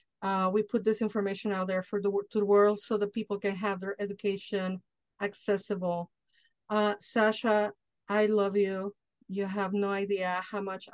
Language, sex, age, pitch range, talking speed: English, female, 50-69, 185-210 Hz, 160 wpm